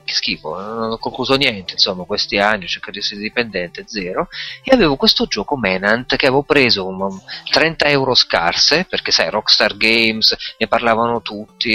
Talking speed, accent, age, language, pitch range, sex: 170 wpm, native, 30-49, Italian, 105-135 Hz, male